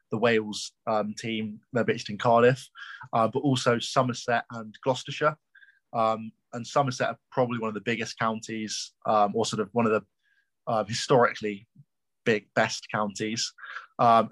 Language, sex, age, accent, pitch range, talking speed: English, male, 20-39, British, 110-125 Hz, 155 wpm